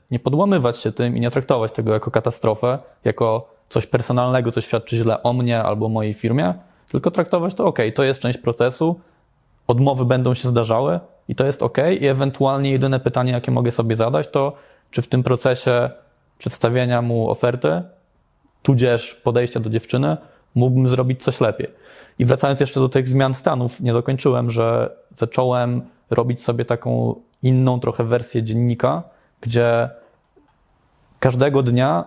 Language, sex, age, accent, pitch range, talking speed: Polish, male, 20-39, native, 115-135 Hz, 155 wpm